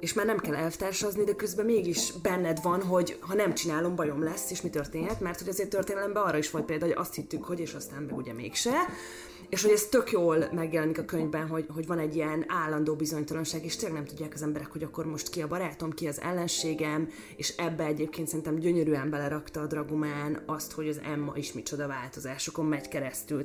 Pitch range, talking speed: 150-170 Hz, 215 wpm